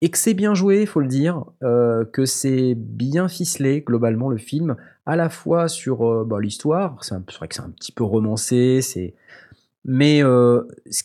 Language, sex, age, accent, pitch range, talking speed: French, male, 30-49, French, 115-170 Hz, 205 wpm